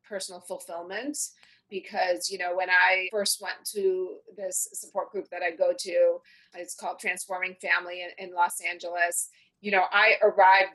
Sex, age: female, 30-49